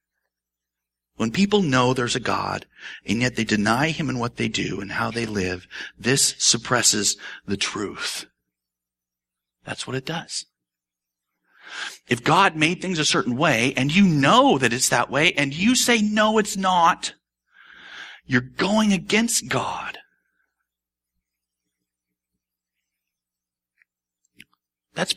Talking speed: 125 wpm